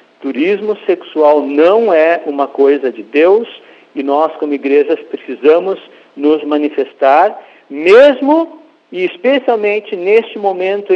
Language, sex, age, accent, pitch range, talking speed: Portuguese, male, 50-69, Brazilian, 150-230 Hz, 110 wpm